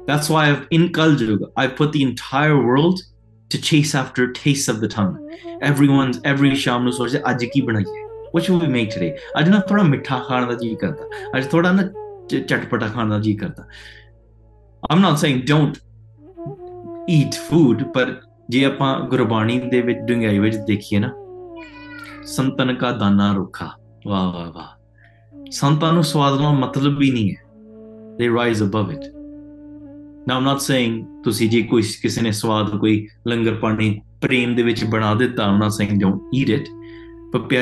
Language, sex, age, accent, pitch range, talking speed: English, male, 20-39, Indian, 110-150 Hz, 135 wpm